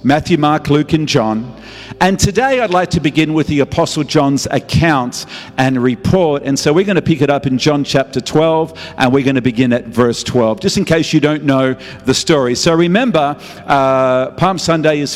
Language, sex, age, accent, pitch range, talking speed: English, male, 50-69, Australian, 135-175 Hz, 205 wpm